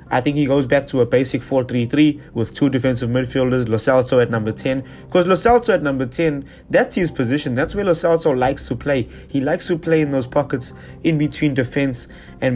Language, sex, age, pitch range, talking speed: English, male, 20-39, 130-175 Hz, 210 wpm